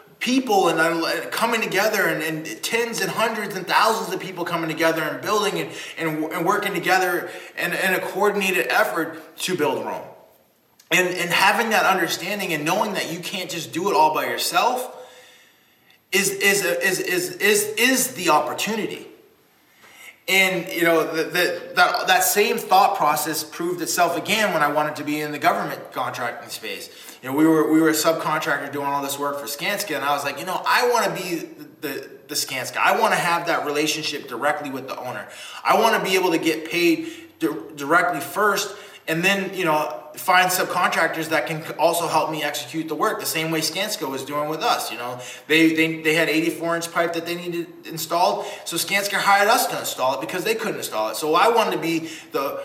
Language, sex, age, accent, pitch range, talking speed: English, male, 20-39, American, 155-195 Hz, 205 wpm